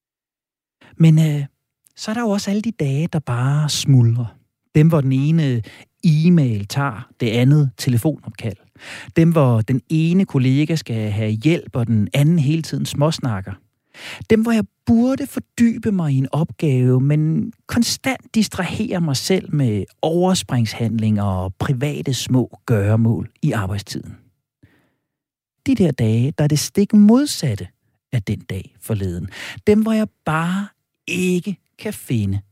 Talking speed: 140 wpm